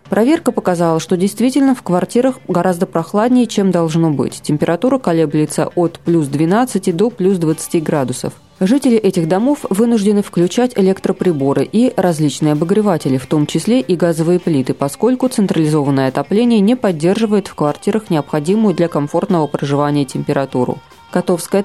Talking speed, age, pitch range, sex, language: 135 wpm, 20-39, 155-205 Hz, female, Russian